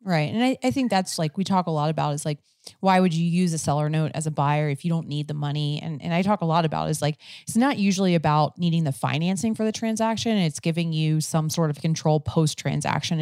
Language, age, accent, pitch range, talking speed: English, 30-49, American, 150-175 Hz, 260 wpm